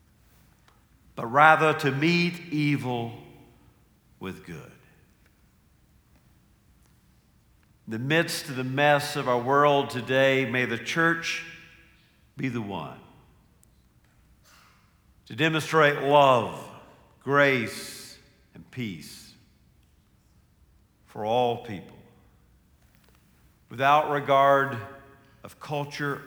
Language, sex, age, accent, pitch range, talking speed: English, male, 60-79, American, 105-140 Hz, 80 wpm